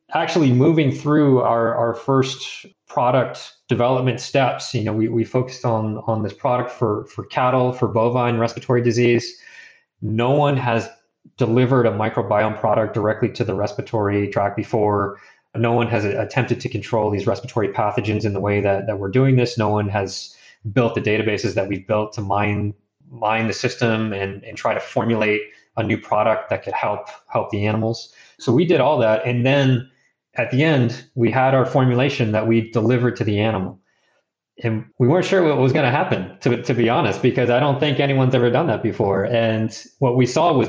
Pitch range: 105-125 Hz